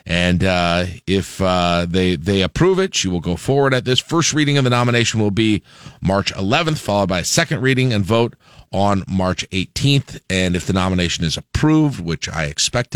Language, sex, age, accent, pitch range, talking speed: English, male, 40-59, American, 95-130 Hz, 195 wpm